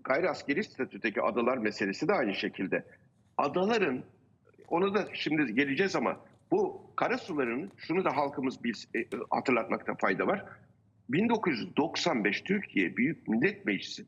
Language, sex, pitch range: Turkish, male, 135-210 Hz